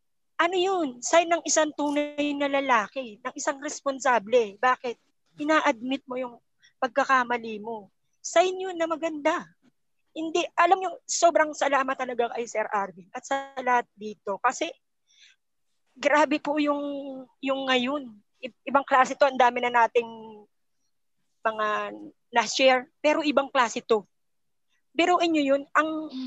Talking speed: 130 wpm